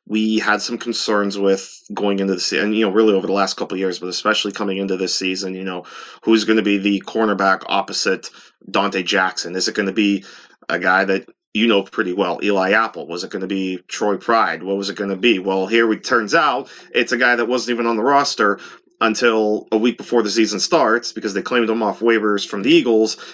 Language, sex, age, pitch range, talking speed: English, male, 30-49, 100-120 Hz, 235 wpm